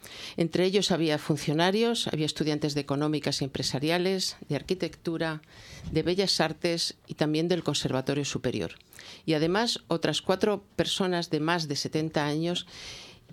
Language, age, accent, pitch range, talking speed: Spanish, 50-69, Spanish, 150-190 Hz, 135 wpm